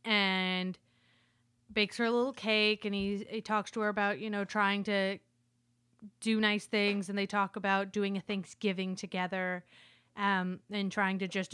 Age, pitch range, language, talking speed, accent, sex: 20-39, 185-215 Hz, English, 170 wpm, American, female